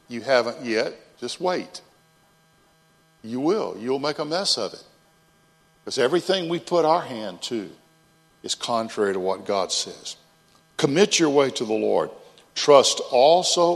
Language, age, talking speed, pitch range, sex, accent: English, 50-69, 150 wpm, 120-160 Hz, male, American